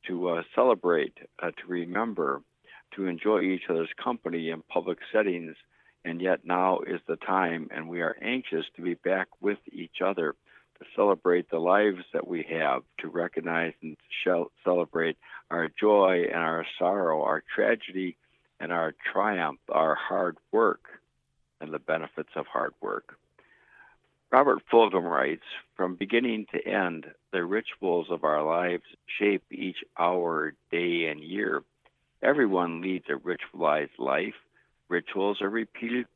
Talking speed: 145 wpm